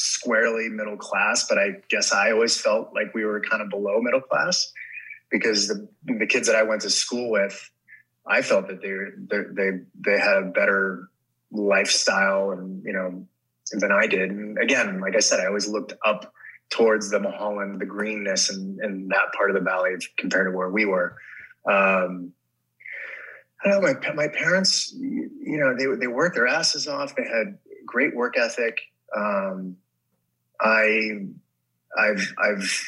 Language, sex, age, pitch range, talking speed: English, male, 20-39, 95-115 Hz, 170 wpm